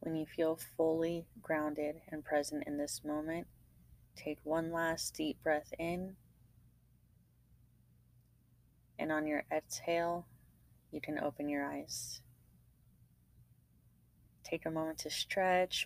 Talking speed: 115 wpm